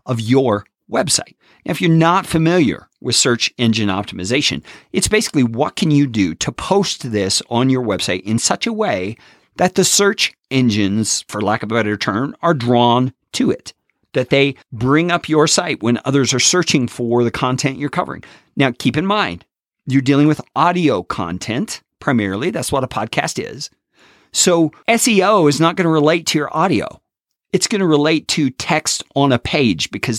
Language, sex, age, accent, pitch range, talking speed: English, male, 40-59, American, 115-160 Hz, 180 wpm